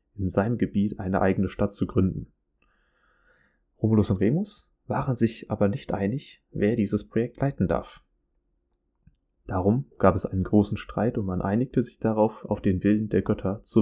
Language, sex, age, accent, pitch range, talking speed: German, male, 30-49, German, 95-110 Hz, 165 wpm